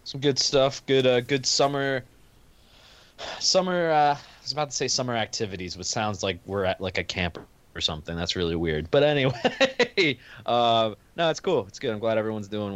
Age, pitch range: 20-39, 95-120 Hz